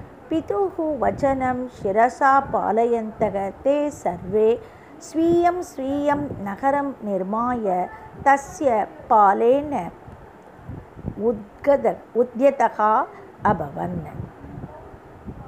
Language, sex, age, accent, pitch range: Tamil, female, 50-69, native, 225-295 Hz